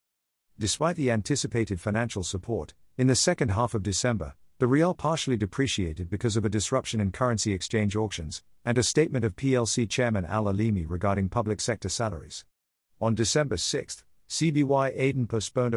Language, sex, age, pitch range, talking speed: English, male, 50-69, 95-130 Hz, 150 wpm